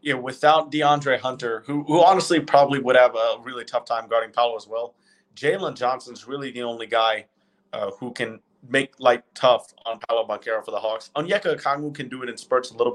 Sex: male